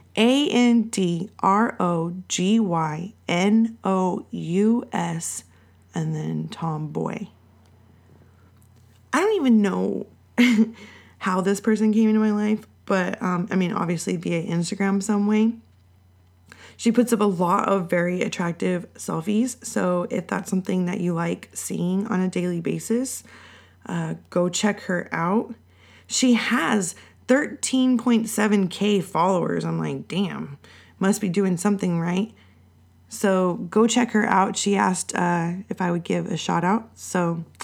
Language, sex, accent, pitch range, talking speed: English, female, American, 165-210 Hz, 125 wpm